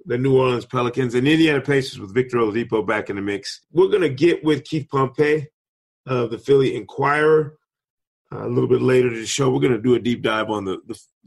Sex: male